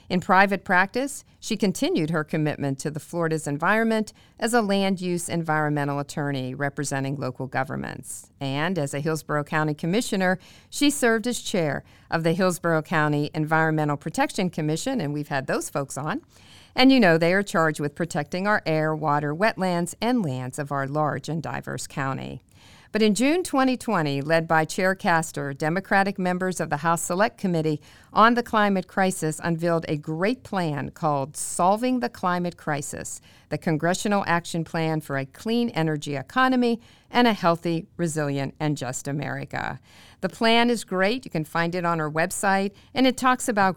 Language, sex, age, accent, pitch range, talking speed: English, female, 50-69, American, 150-200 Hz, 165 wpm